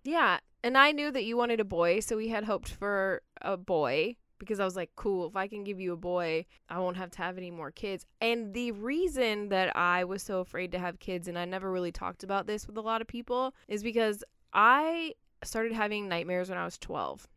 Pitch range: 175-220 Hz